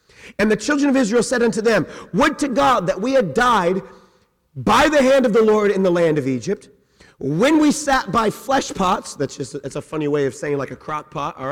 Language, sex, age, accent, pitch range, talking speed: English, male, 40-59, American, 180-250 Hz, 235 wpm